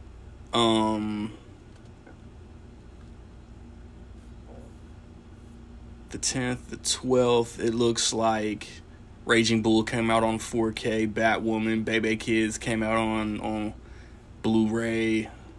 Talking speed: 85 wpm